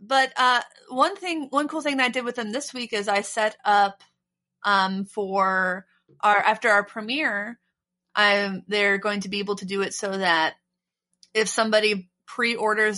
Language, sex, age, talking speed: English, female, 30-49, 175 wpm